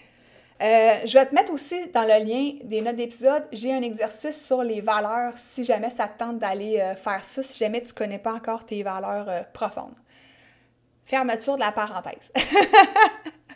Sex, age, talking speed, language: female, 30-49, 180 wpm, French